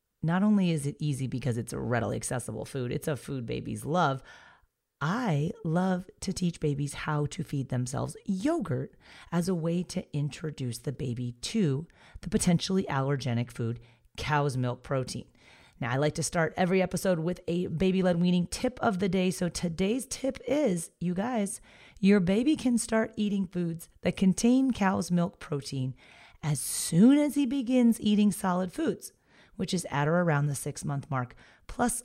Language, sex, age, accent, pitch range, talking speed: English, female, 30-49, American, 140-190 Hz, 170 wpm